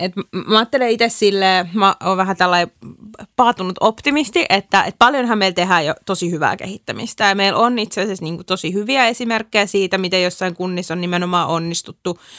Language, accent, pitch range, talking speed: Finnish, native, 165-195 Hz, 180 wpm